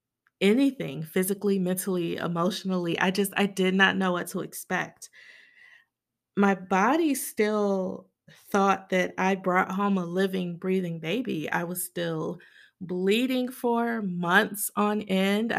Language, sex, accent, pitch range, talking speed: English, female, American, 185-215 Hz, 125 wpm